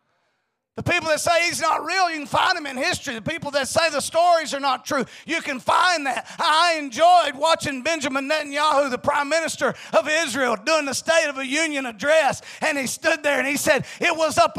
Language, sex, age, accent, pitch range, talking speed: English, male, 40-59, American, 260-335 Hz, 220 wpm